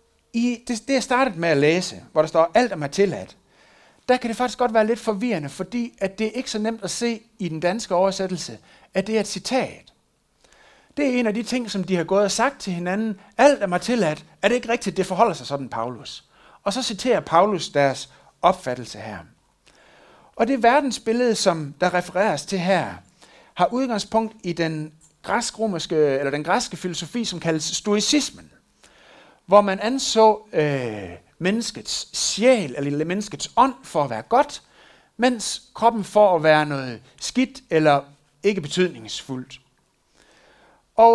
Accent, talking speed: native, 170 wpm